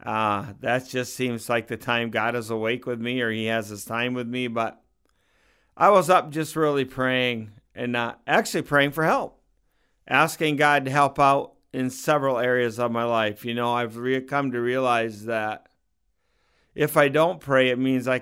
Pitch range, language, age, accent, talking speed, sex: 120-140 Hz, English, 40-59, American, 190 wpm, male